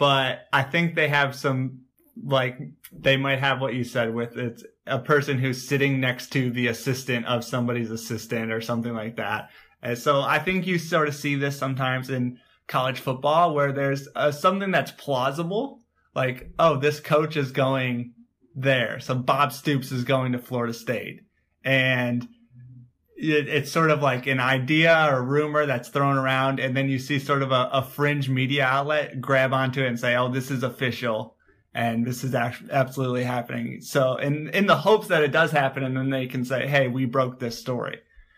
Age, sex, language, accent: 20-39, male, English, American